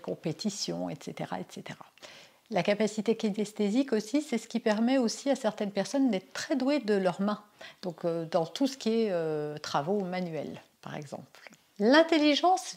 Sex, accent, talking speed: female, French, 160 wpm